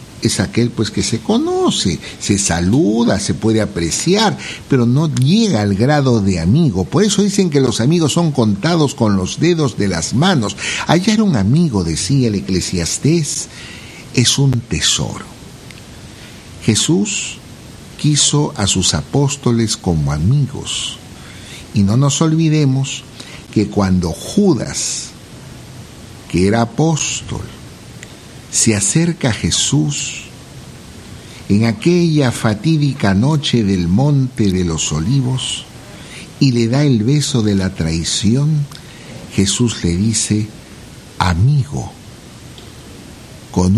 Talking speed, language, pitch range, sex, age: 115 wpm, Spanish, 105-150 Hz, male, 60-79